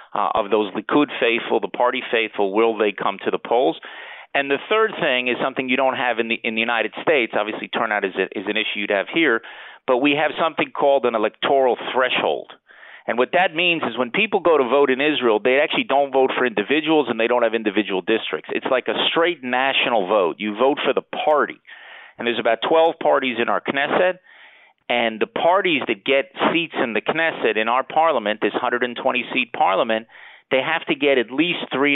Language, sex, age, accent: English, male, 40-59, American